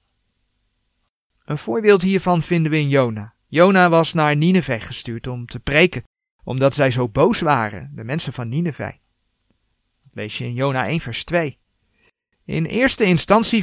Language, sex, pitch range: Dutch, male, 115-170 Hz